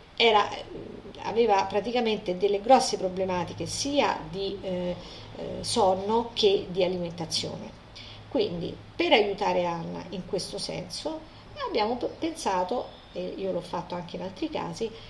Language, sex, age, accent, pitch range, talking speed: Italian, female, 50-69, native, 180-235 Hz, 115 wpm